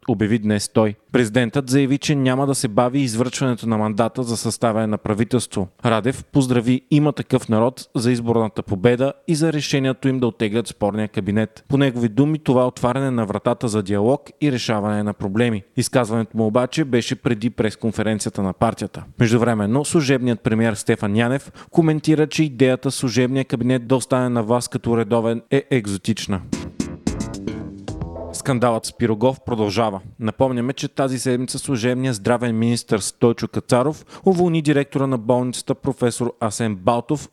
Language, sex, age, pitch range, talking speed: Bulgarian, male, 30-49, 115-135 Hz, 150 wpm